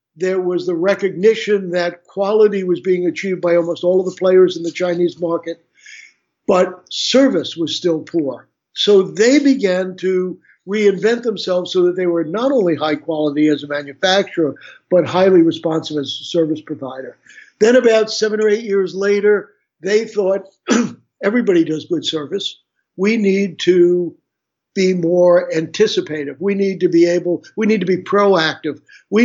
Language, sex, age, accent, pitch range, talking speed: German, male, 60-79, American, 170-200 Hz, 160 wpm